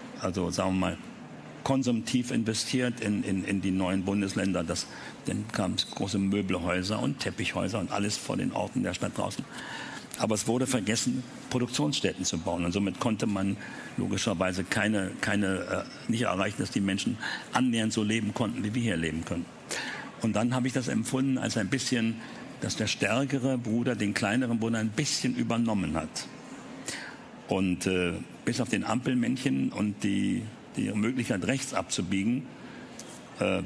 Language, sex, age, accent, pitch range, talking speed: German, male, 60-79, German, 95-115 Hz, 160 wpm